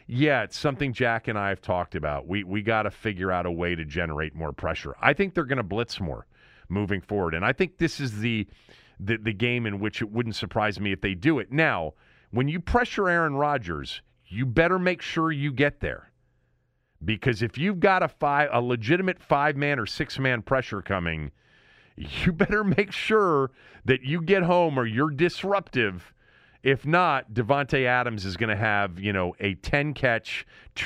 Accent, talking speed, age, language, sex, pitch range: American, 195 wpm, 40-59, English, male, 105-165 Hz